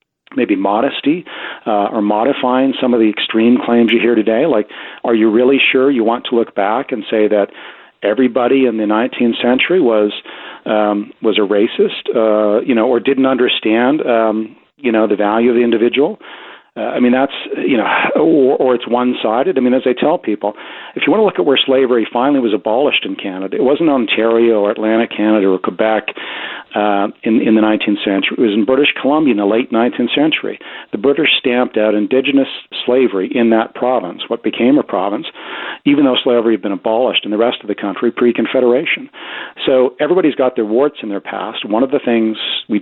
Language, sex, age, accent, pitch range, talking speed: English, male, 40-59, American, 105-125 Hz, 200 wpm